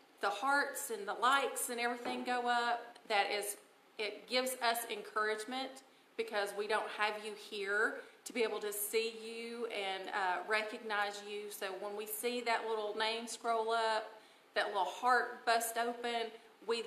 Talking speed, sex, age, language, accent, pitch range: 165 wpm, female, 40-59, English, American, 195-235 Hz